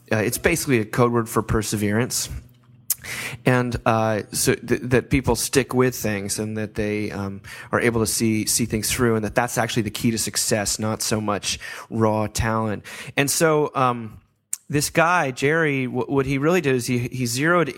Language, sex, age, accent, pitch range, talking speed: English, male, 30-49, American, 110-135 Hz, 190 wpm